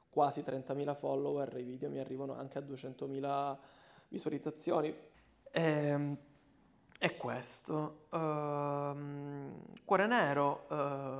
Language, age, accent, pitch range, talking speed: Italian, 20-39, native, 135-145 Hz, 95 wpm